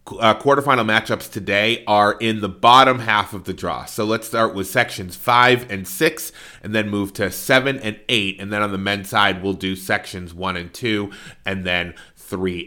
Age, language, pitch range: 30-49, English, 100-125 Hz